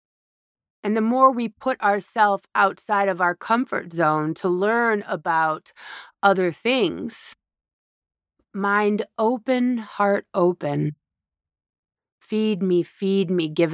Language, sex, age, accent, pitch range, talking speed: English, female, 40-59, American, 170-230 Hz, 110 wpm